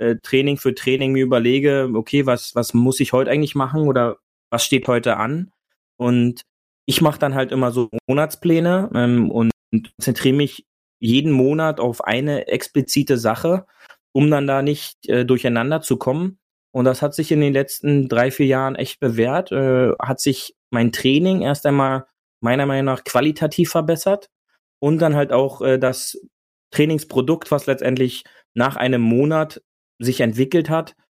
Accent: German